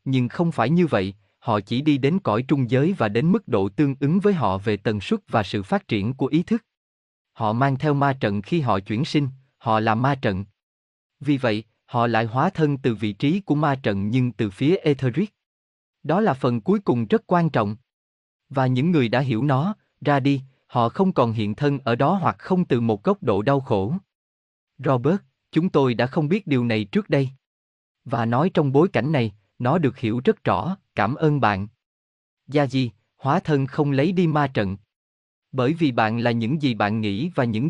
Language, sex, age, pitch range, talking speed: Vietnamese, male, 20-39, 110-155 Hz, 210 wpm